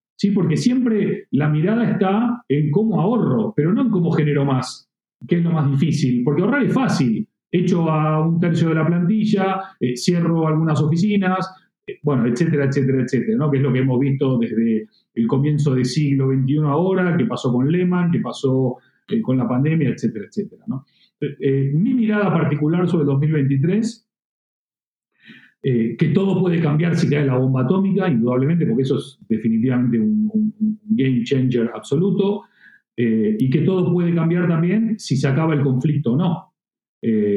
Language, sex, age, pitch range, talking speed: Spanish, male, 40-59, 130-190 Hz, 175 wpm